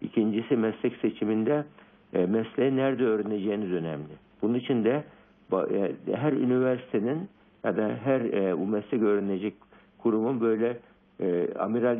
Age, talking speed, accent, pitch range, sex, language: 60-79, 100 wpm, native, 95-115 Hz, male, Turkish